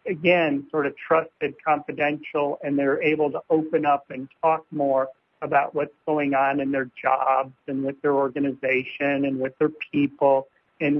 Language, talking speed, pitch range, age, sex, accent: English, 165 wpm, 135-155 Hz, 50-69, male, American